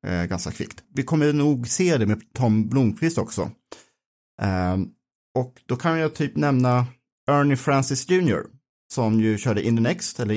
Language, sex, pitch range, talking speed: Swedish, male, 105-135 Hz, 170 wpm